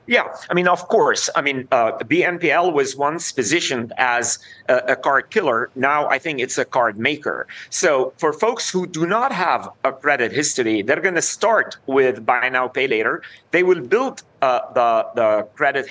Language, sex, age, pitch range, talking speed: English, male, 40-59, 130-180 Hz, 190 wpm